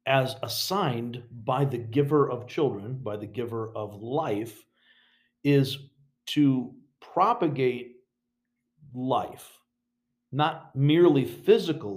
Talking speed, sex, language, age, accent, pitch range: 95 wpm, male, English, 50-69, American, 115-150 Hz